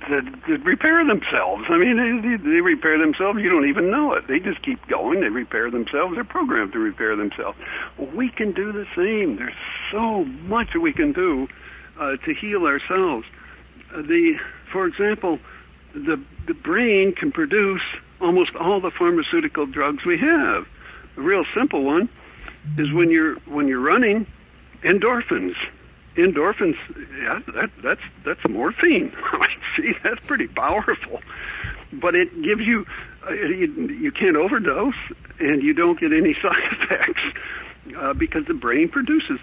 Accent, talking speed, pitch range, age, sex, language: American, 150 wpm, 215-335 Hz, 60-79, male, English